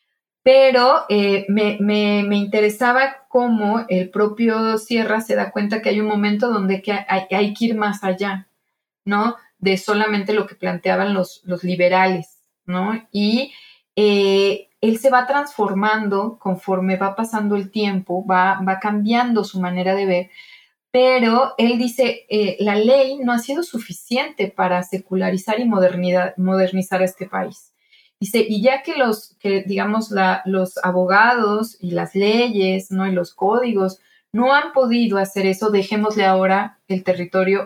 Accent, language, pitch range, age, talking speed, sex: Mexican, Spanish, 190-225 Hz, 30-49, 155 wpm, female